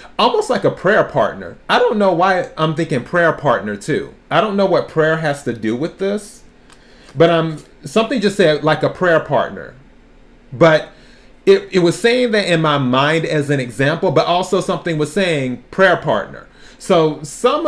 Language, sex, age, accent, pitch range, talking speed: English, male, 30-49, American, 135-175 Hz, 185 wpm